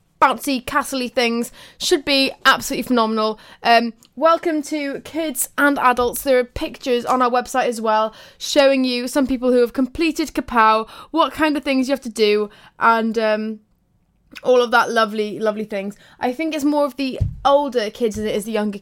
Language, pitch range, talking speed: English, 220-270 Hz, 185 wpm